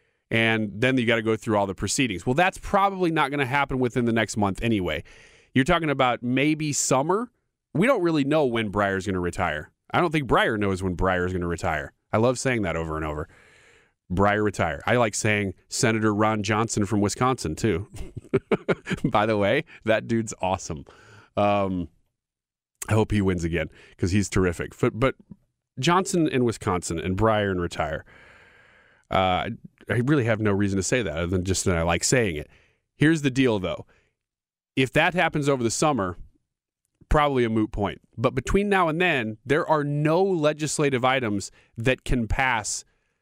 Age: 30-49